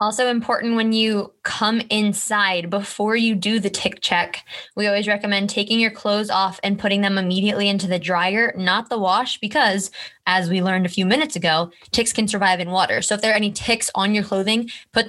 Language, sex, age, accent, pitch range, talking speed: English, female, 20-39, American, 190-225 Hz, 205 wpm